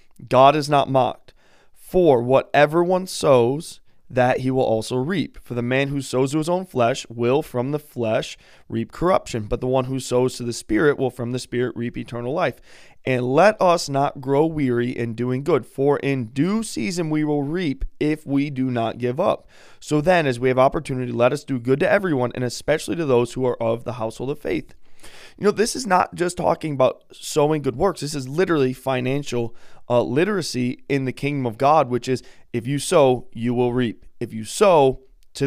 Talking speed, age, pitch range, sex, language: 205 wpm, 20-39, 120-145 Hz, male, English